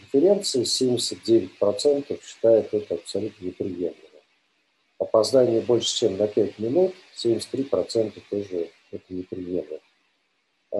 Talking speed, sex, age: 85 wpm, male, 50-69